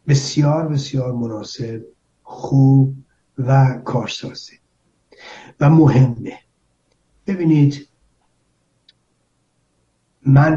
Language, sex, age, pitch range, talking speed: Persian, male, 60-79, 125-145 Hz, 55 wpm